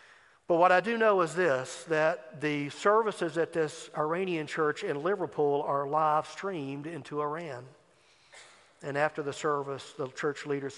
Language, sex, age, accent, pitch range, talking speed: English, male, 50-69, American, 140-170 Hz, 155 wpm